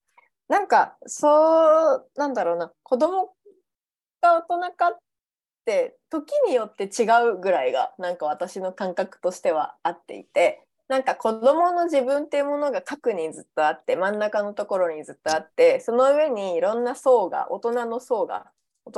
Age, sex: 20-39, female